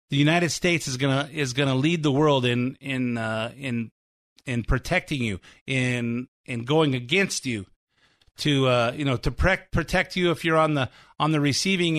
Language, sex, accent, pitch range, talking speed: English, male, American, 130-160 Hz, 195 wpm